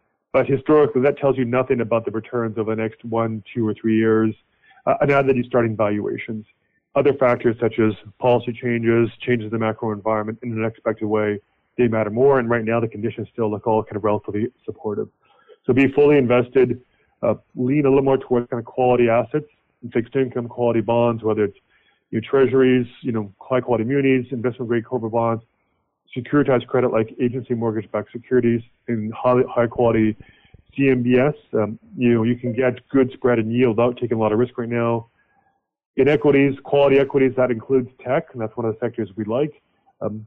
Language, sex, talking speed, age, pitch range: English, male, 190 wpm, 30-49, 110-130 Hz